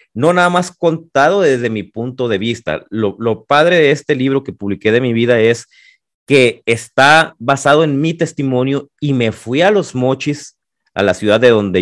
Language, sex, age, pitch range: Spanish, male, 30-49, 100-135 Hz